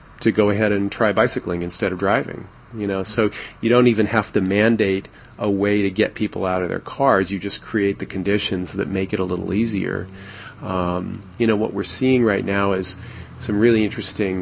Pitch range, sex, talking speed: 95-110 Hz, male, 210 wpm